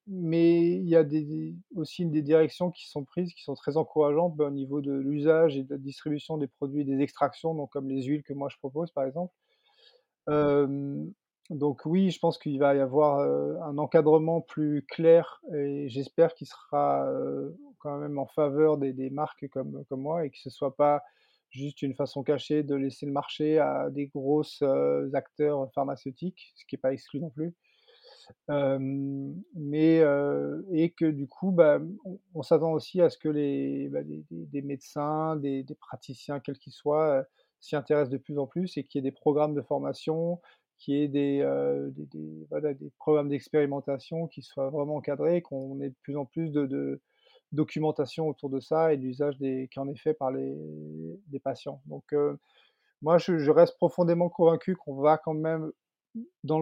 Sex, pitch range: male, 140-160 Hz